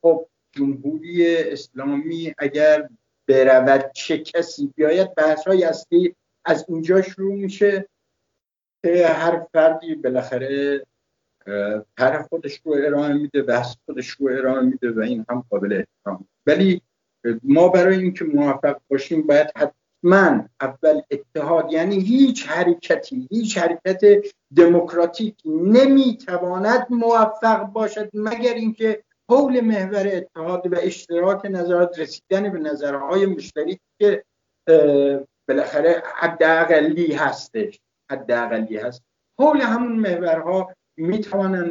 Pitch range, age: 150-205 Hz, 60-79